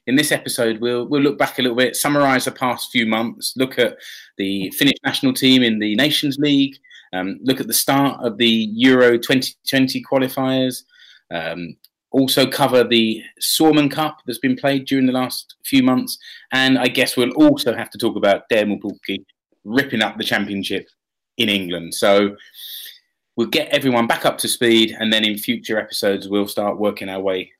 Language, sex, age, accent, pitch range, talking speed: English, male, 30-49, British, 110-145 Hz, 185 wpm